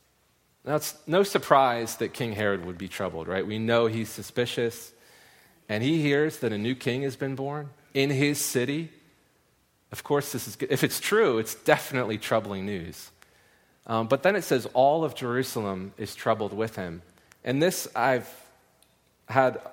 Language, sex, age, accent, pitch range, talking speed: English, male, 30-49, American, 100-135 Hz, 170 wpm